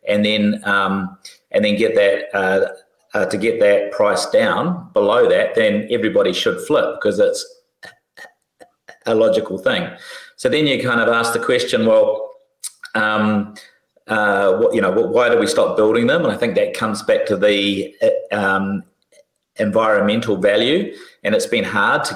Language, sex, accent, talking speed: English, male, Australian, 165 wpm